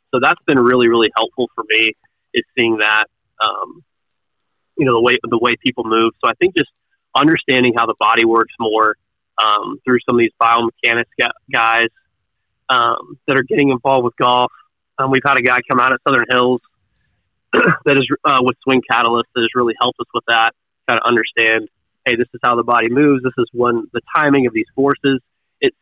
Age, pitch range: 20-39, 115-125 Hz